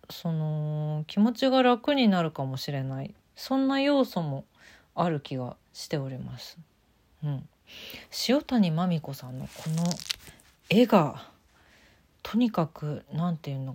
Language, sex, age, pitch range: Japanese, female, 40-59, 145-230 Hz